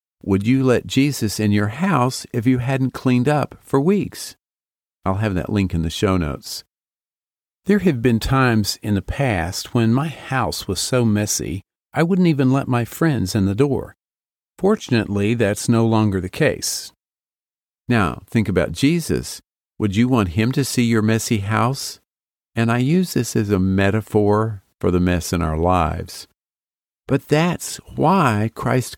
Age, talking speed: 50-69, 165 wpm